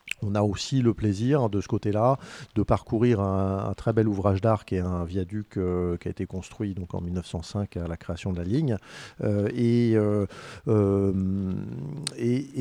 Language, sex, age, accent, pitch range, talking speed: French, male, 50-69, French, 95-120 Hz, 180 wpm